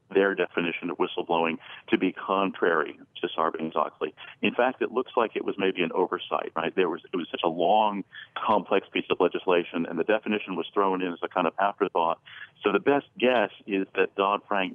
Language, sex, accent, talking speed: English, male, American, 200 wpm